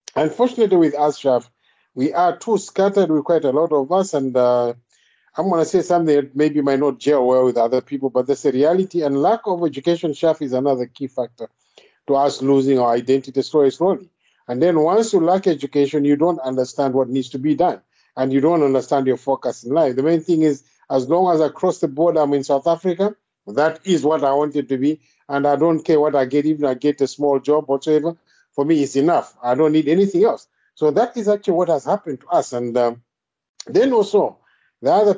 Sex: male